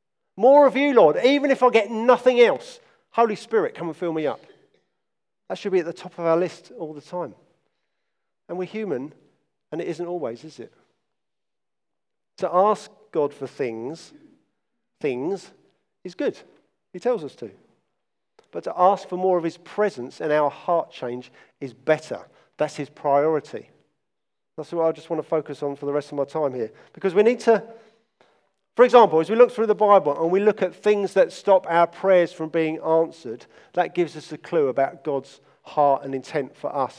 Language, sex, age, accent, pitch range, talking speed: English, male, 50-69, British, 150-210 Hz, 190 wpm